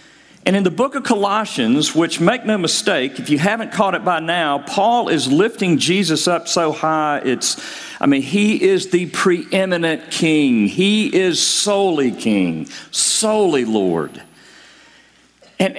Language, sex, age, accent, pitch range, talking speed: English, male, 50-69, American, 175-255 Hz, 150 wpm